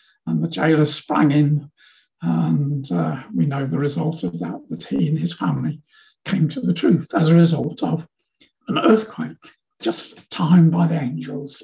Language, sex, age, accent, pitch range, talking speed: English, male, 60-79, British, 145-195 Hz, 170 wpm